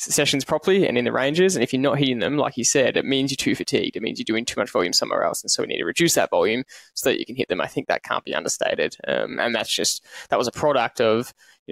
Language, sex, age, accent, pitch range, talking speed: English, male, 10-29, Australian, 120-145 Hz, 300 wpm